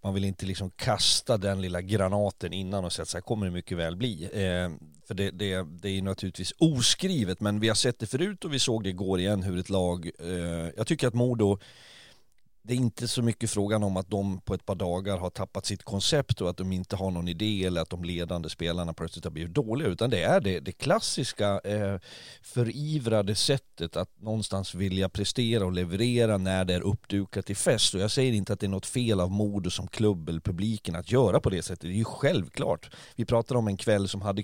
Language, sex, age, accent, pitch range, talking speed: Swedish, male, 40-59, native, 95-120 Hz, 235 wpm